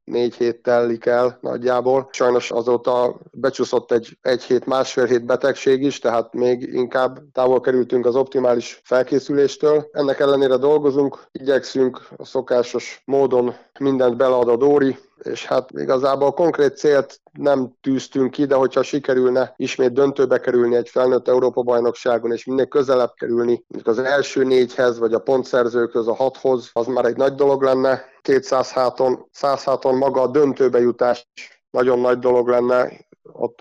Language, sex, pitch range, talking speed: Hungarian, male, 120-135 Hz, 145 wpm